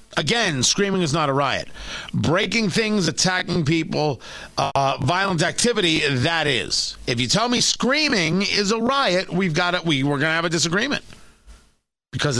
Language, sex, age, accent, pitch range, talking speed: English, male, 40-59, American, 165-210 Hz, 160 wpm